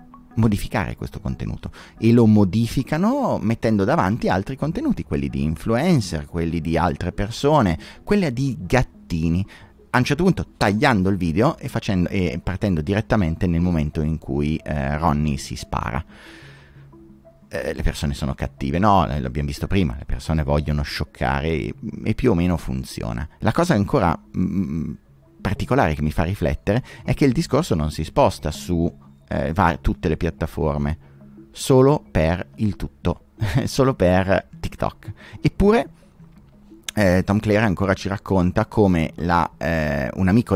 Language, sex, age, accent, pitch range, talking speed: Italian, male, 30-49, native, 75-110 Hz, 140 wpm